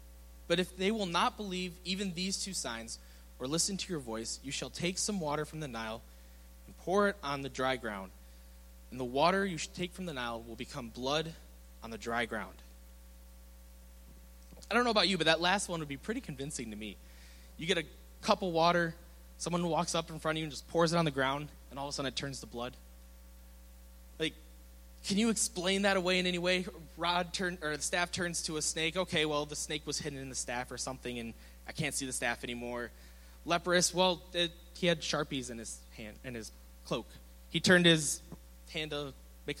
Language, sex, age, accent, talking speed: English, male, 20-39, American, 220 wpm